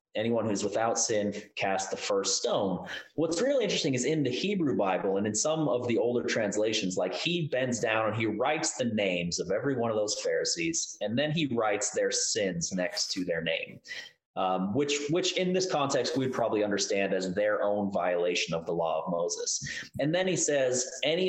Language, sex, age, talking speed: English, male, 30-49, 200 wpm